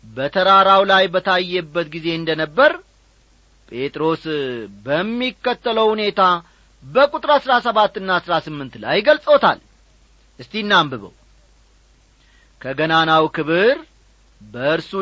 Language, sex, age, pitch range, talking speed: Amharic, male, 40-59, 160-225 Hz, 70 wpm